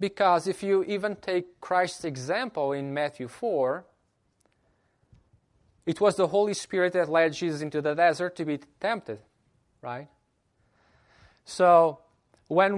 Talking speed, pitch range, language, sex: 125 wpm, 150-190 Hz, English, male